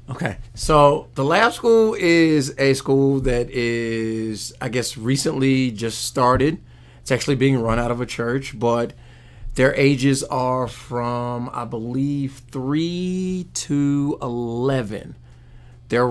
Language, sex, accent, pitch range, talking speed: English, male, American, 120-135 Hz, 125 wpm